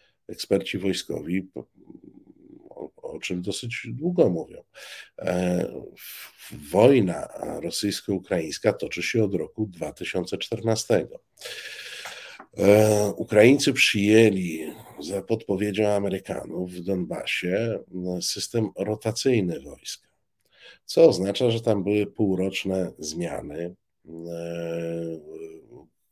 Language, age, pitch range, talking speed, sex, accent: Polish, 50-69, 90-110 Hz, 80 wpm, male, native